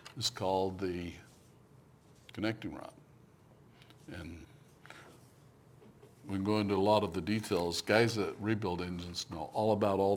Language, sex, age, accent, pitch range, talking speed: English, male, 60-79, American, 95-120 Hz, 125 wpm